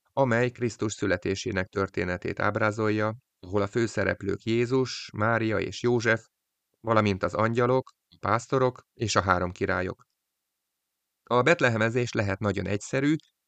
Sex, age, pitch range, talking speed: male, 30-49, 95-120 Hz, 115 wpm